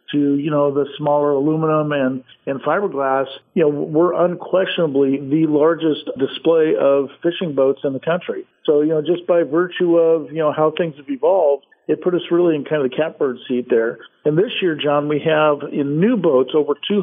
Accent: American